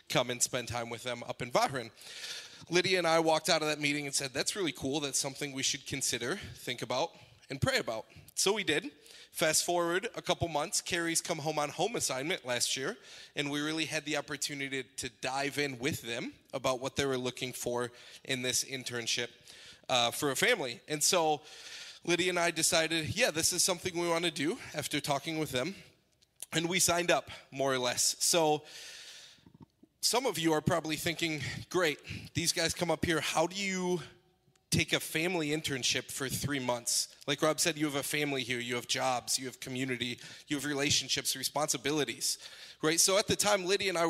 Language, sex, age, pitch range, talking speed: English, male, 30-49, 135-170 Hz, 200 wpm